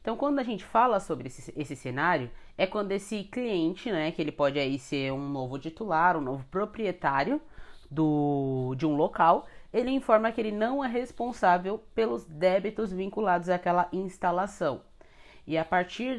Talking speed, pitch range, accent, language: 165 wpm, 150-200 Hz, Brazilian, Portuguese